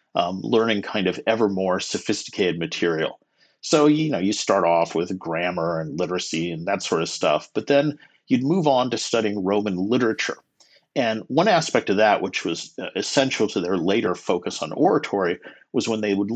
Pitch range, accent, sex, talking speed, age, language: 95-120 Hz, American, male, 185 wpm, 50-69, English